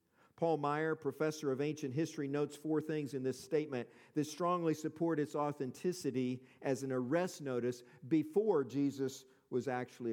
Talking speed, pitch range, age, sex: 150 wpm, 125-155 Hz, 50-69, male